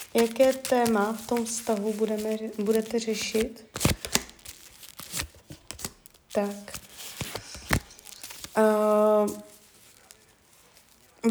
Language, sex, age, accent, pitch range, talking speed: Czech, female, 20-39, native, 205-235 Hz, 55 wpm